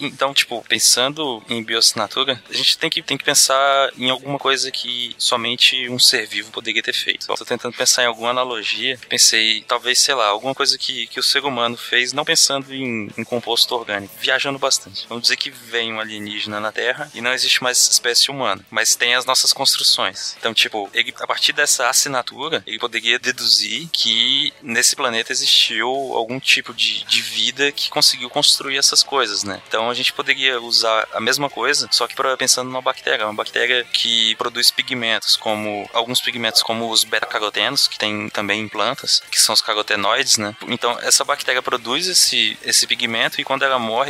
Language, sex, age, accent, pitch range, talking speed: Portuguese, male, 20-39, Brazilian, 110-130 Hz, 190 wpm